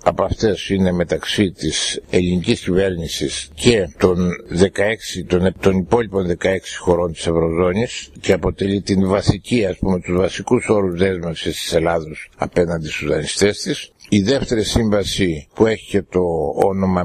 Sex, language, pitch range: male, English, 90-115 Hz